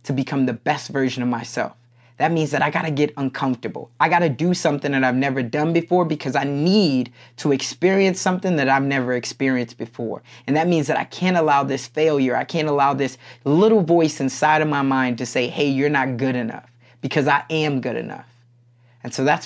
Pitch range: 130-155 Hz